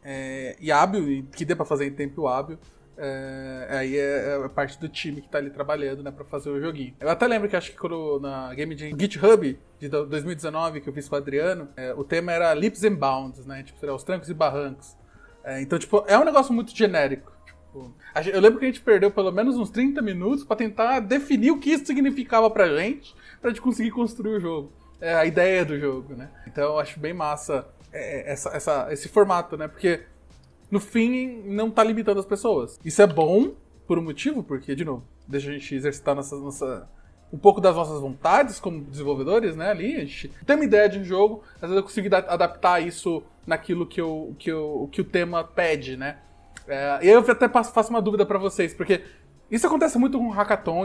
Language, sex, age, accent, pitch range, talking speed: Portuguese, male, 20-39, Brazilian, 145-215 Hz, 220 wpm